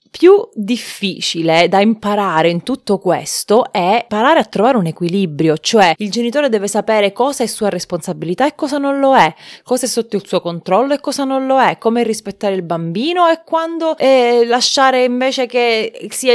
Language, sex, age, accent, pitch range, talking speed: Italian, female, 30-49, native, 185-255 Hz, 175 wpm